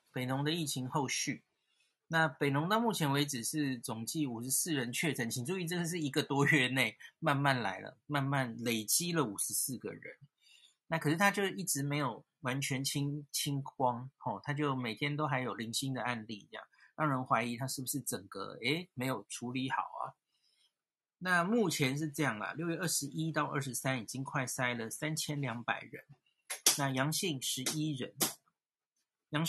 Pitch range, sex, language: 130-155 Hz, male, Chinese